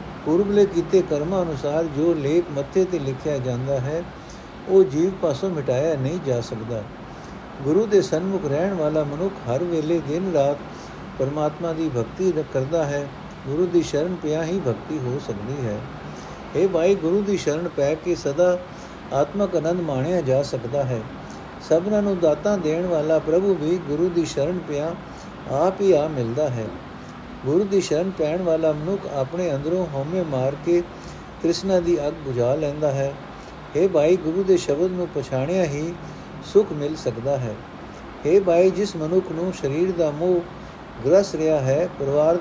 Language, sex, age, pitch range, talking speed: Punjabi, male, 60-79, 140-180 Hz, 150 wpm